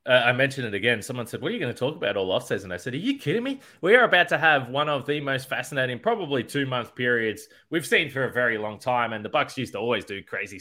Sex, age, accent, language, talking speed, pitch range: male, 20-39, Australian, English, 290 wpm, 125-155 Hz